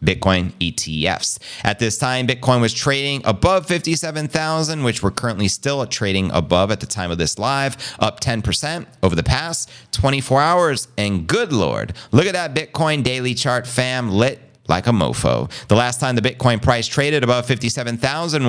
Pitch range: 100-135 Hz